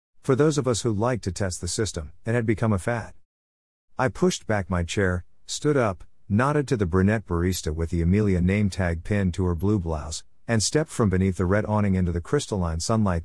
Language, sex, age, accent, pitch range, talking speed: English, male, 50-69, American, 85-115 Hz, 215 wpm